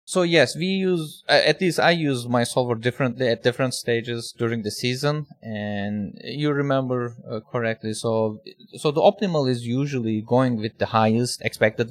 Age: 20-39